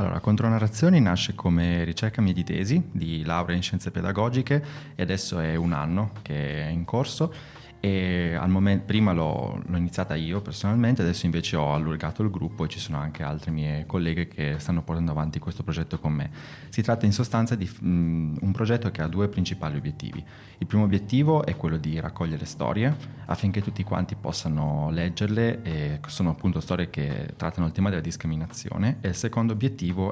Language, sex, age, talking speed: Italian, male, 20-39, 180 wpm